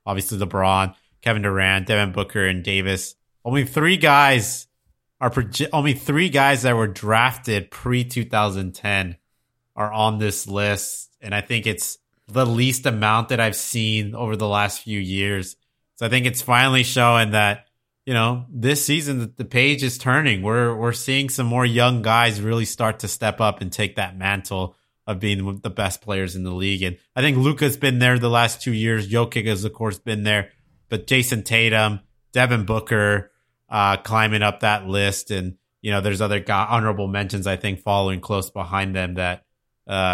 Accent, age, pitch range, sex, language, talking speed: American, 30-49, 100-125 Hz, male, English, 180 wpm